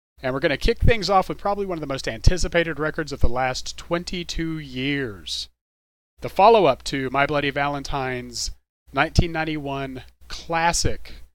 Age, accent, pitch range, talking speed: 30-49, American, 95-155 Hz, 150 wpm